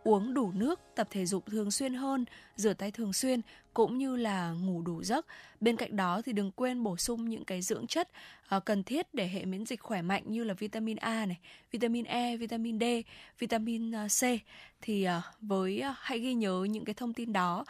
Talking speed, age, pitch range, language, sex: 205 wpm, 10-29, 195-240 Hz, Vietnamese, female